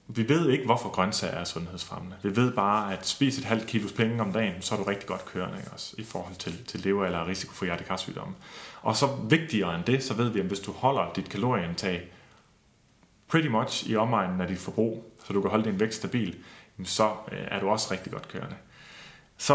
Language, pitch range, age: Danish, 95-120 Hz, 30-49